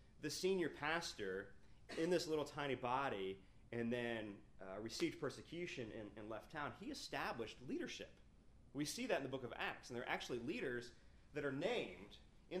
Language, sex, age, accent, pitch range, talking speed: English, male, 30-49, American, 110-155 Hz, 175 wpm